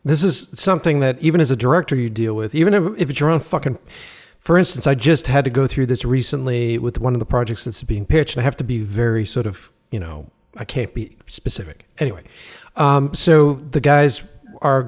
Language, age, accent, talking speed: English, 40-59, American, 225 wpm